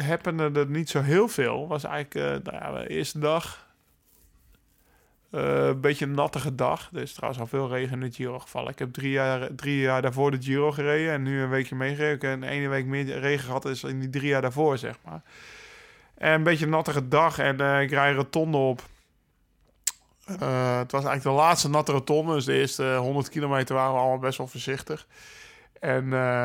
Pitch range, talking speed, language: 130-150 Hz, 215 wpm, Dutch